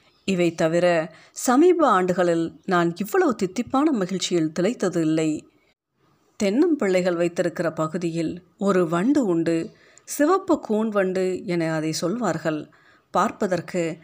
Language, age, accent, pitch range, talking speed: Tamil, 50-69, native, 170-210 Hz, 100 wpm